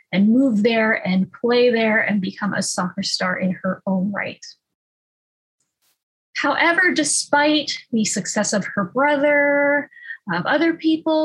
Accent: American